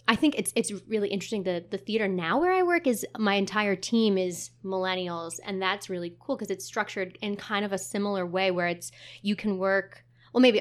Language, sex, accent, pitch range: English, female, American, 170-200 Hz